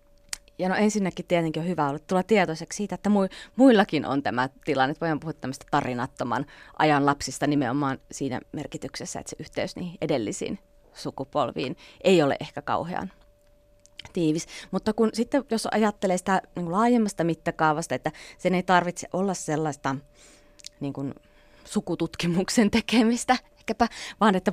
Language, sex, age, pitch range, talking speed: Finnish, female, 30-49, 145-200 Hz, 140 wpm